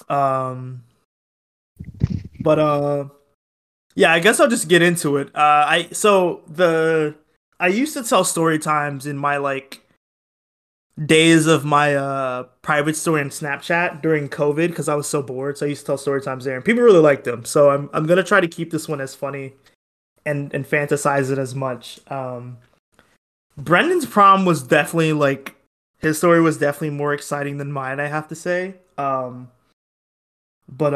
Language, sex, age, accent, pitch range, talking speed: English, male, 20-39, American, 135-160 Hz, 175 wpm